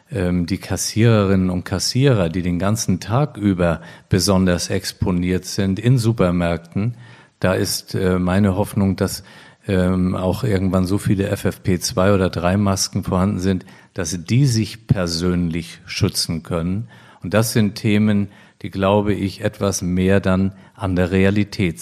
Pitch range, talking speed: 95-115 Hz, 130 wpm